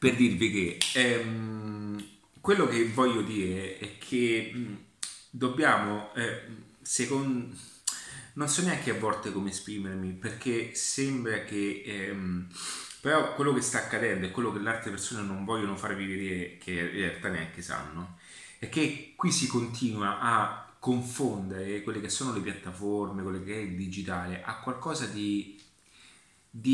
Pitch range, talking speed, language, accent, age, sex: 100-130 Hz, 150 wpm, Italian, native, 30-49, male